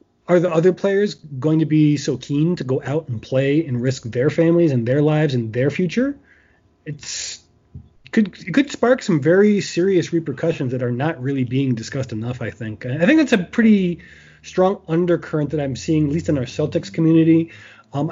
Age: 20-39